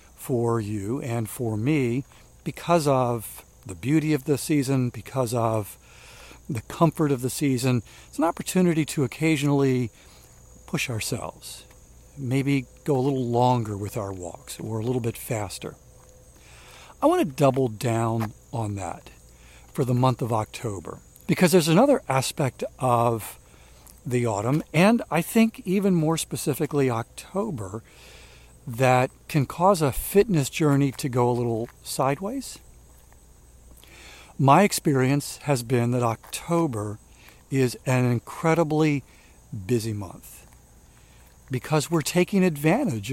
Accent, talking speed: American, 125 wpm